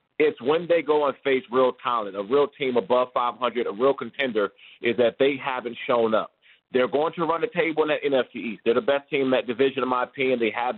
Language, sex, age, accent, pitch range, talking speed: English, male, 40-59, American, 125-155 Hz, 245 wpm